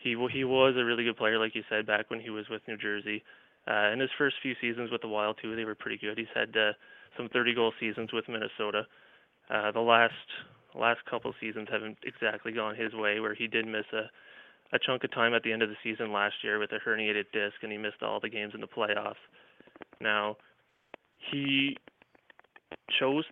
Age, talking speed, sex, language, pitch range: 20-39, 215 wpm, male, English, 110-125 Hz